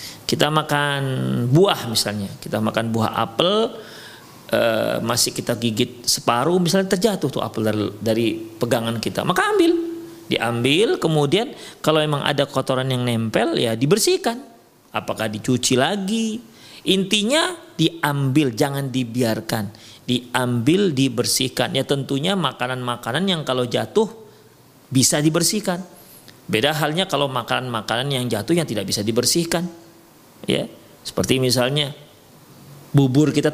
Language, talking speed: Indonesian, 110 wpm